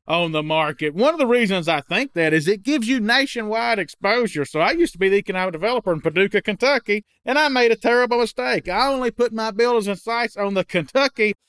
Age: 40-59